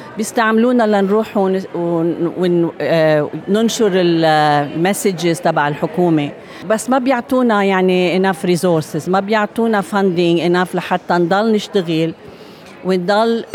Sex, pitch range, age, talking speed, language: female, 165-215 Hz, 40-59, 90 wpm, Arabic